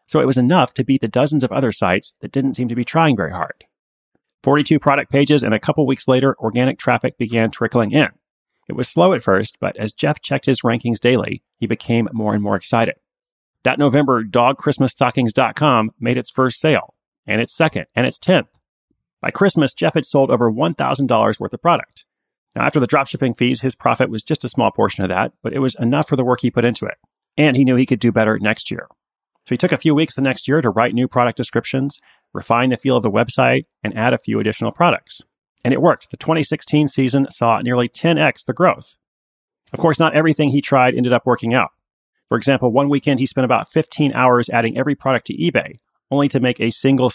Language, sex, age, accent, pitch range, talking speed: English, male, 30-49, American, 120-140 Hz, 220 wpm